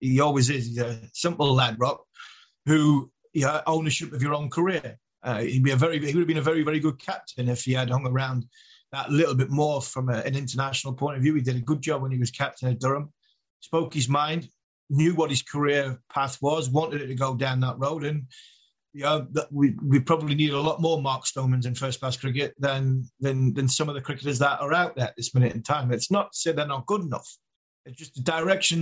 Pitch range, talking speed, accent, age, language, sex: 130-155 Hz, 240 wpm, British, 30-49, English, male